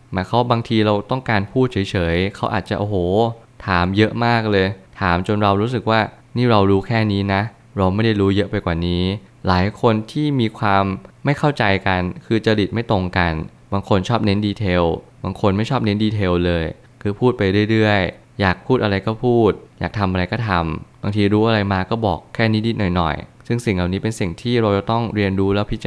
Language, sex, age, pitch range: Thai, male, 20-39, 95-115 Hz